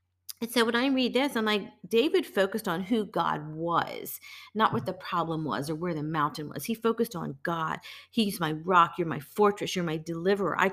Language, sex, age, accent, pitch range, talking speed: English, female, 40-59, American, 160-205 Hz, 215 wpm